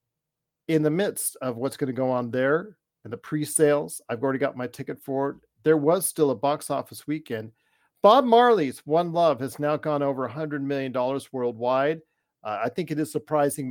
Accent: American